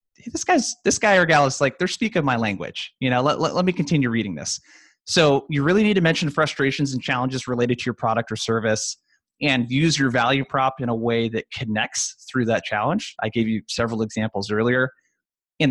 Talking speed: 220 wpm